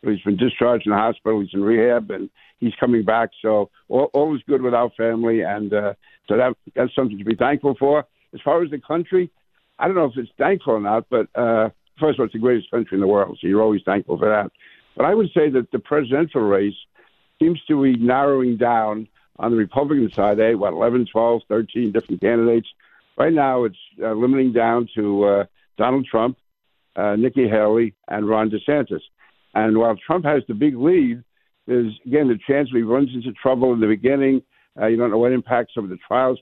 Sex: male